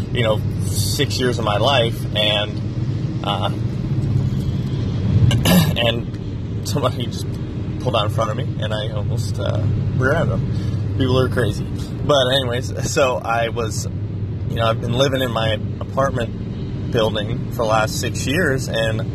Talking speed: 145 wpm